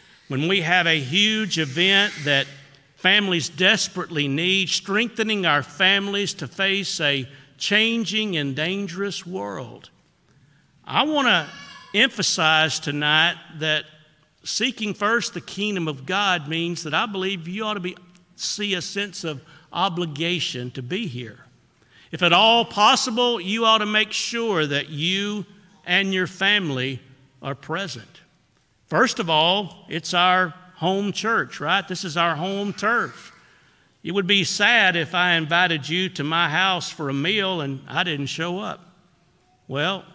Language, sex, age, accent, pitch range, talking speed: English, male, 50-69, American, 150-195 Hz, 145 wpm